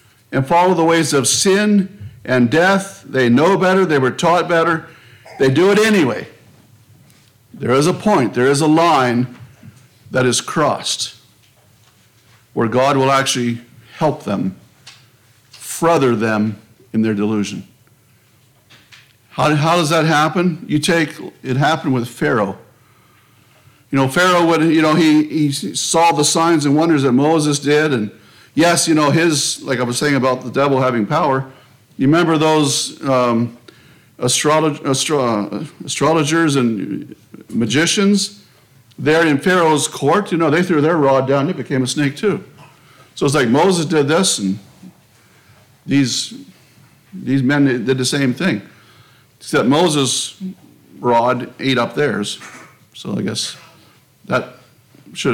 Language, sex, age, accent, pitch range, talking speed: English, male, 60-79, American, 125-160 Hz, 145 wpm